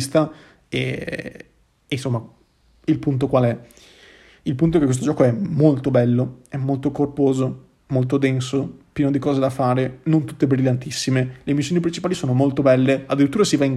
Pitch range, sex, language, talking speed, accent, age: 130-150 Hz, male, Italian, 170 wpm, native, 30-49